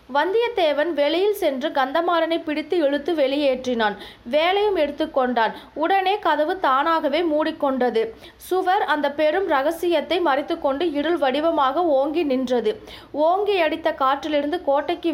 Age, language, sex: 20-39, Tamil, female